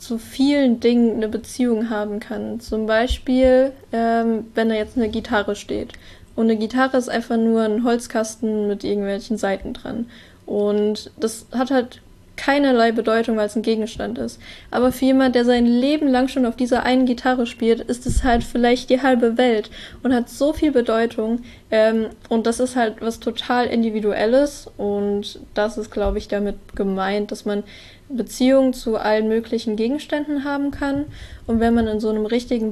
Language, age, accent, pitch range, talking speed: German, 10-29, German, 220-250 Hz, 175 wpm